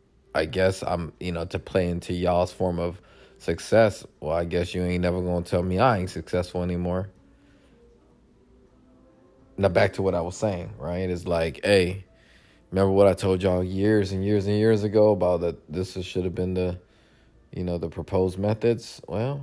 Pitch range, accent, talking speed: 90-105 Hz, American, 190 wpm